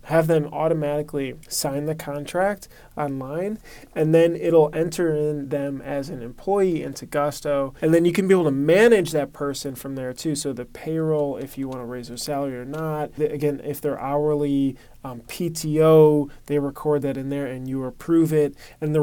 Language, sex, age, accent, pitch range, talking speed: English, male, 20-39, American, 135-155 Hz, 190 wpm